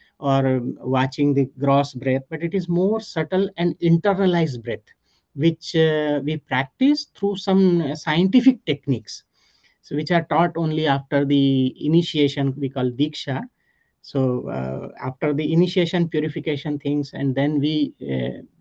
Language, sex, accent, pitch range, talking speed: English, male, Indian, 140-200 Hz, 140 wpm